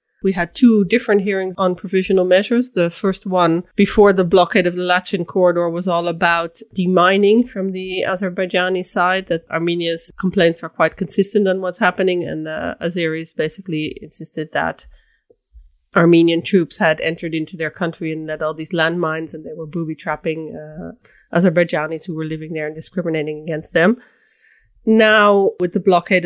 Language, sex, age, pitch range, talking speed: English, female, 30-49, 165-195 Hz, 160 wpm